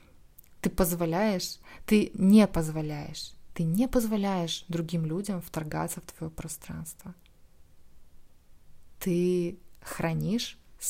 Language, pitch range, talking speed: Russian, 165-200 Hz, 90 wpm